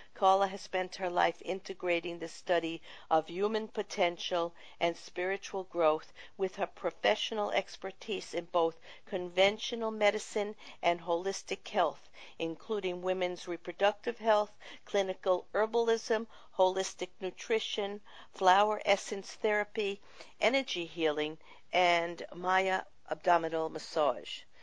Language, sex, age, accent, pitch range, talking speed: English, female, 50-69, American, 175-205 Hz, 100 wpm